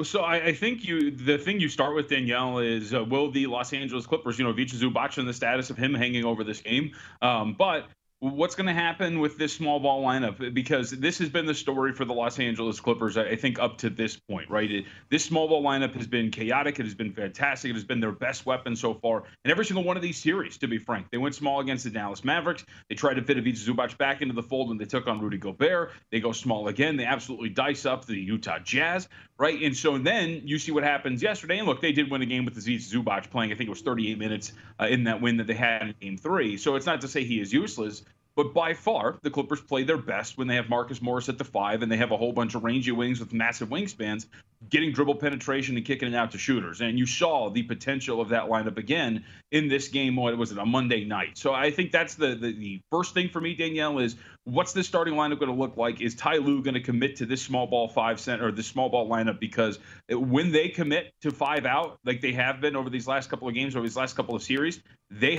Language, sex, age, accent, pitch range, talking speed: English, male, 30-49, American, 115-145 Hz, 265 wpm